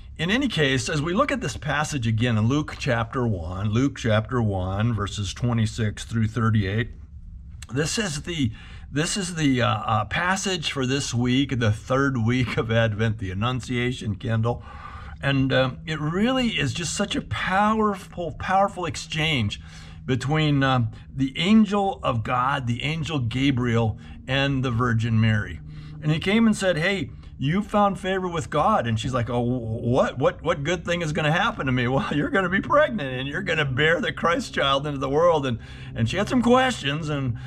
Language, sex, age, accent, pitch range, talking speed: English, male, 50-69, American, 115-155 Hz, 185 wpm